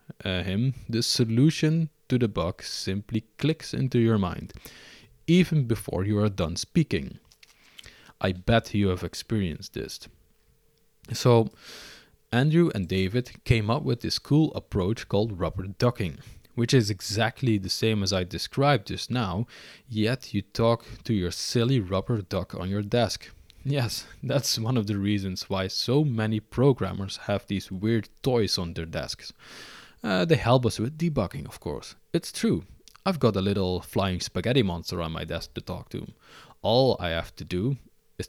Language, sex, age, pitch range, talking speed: English, male, 20-39, 95-120 Hz, 165 wpm